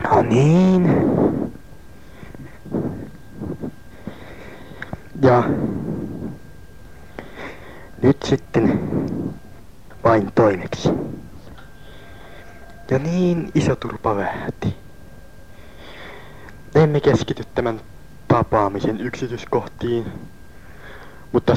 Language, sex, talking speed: Finnish, male, 50 wpm